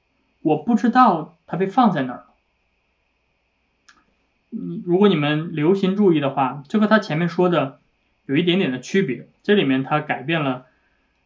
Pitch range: 135-190 Hz